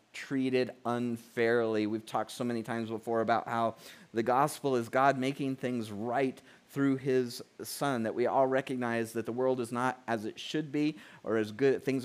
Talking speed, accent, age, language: 185 wpm, American, 30-49, English